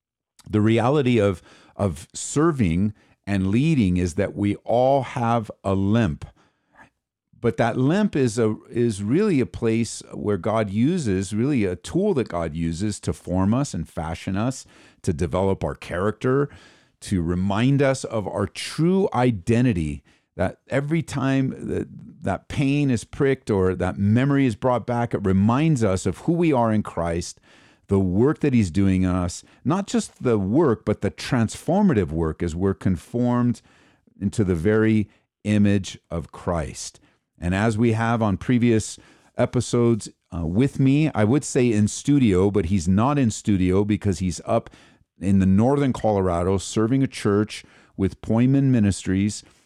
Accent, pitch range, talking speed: American, 95-125 Hz, 155 wpm